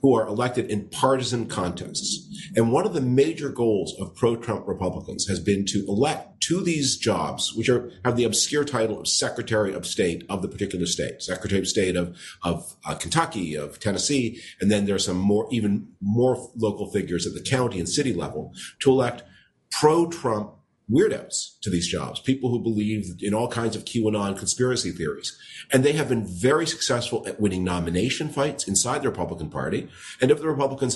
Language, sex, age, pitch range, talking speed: English, male, 40-59, 100-130 Hz, 185 wpm